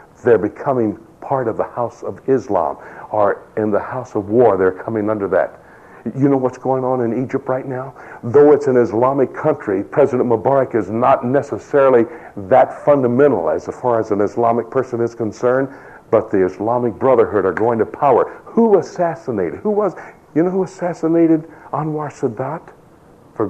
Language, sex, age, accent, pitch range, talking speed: English, male, 60-79, American, 115-145 Hz, 170 wpm